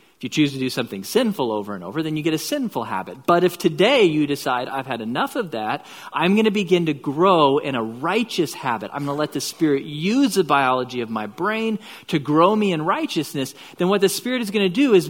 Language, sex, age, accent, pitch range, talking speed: English, male, 40-59, American, 140-195 Hz, 245 wpm